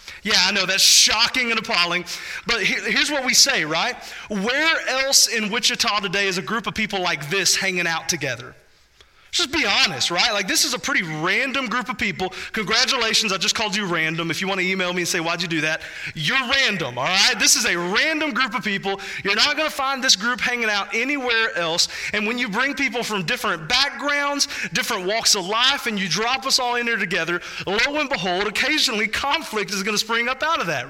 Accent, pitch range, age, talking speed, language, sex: American, 170-255 Hz, 30-49, 220 wpm, English, male